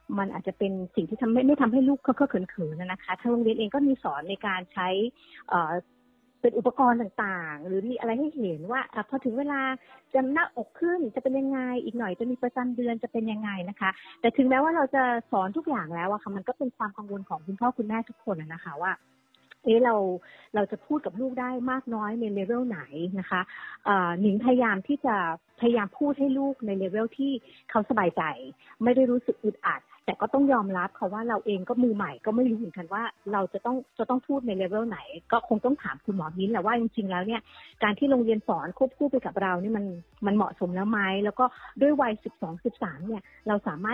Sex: female